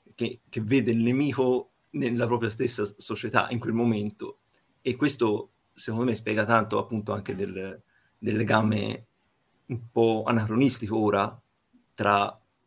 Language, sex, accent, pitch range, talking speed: Italian, male, native, 105-120 Hz, 135 wpm